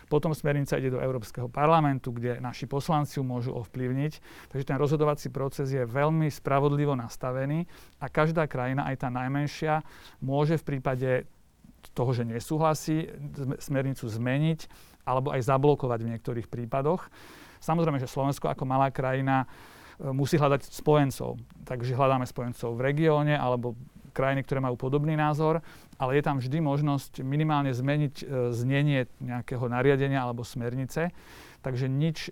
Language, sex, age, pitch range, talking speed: Slovak, male, 40-59, 130-150 Hz, 135 wpm